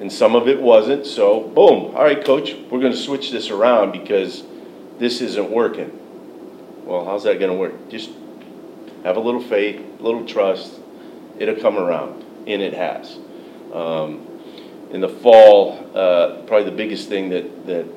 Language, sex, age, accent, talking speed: English, male, 40-59, American, 170 wpm